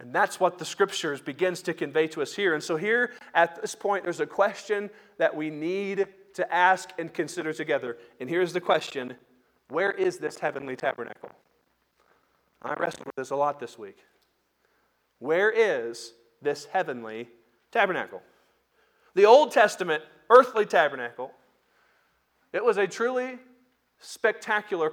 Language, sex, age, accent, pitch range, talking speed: English, male, 40-59, American, 165-230 Hz, 145 wpm